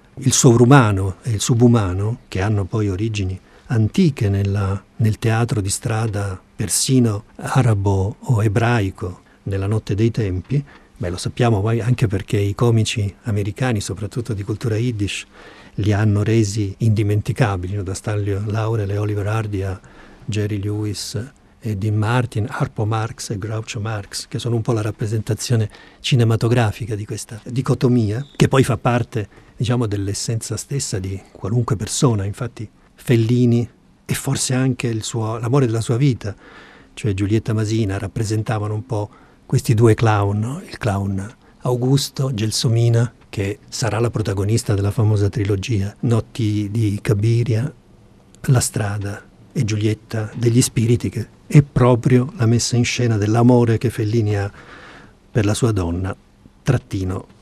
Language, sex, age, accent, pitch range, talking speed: Italian, male, 50-69, native, 105-120 Hz, 140 wpm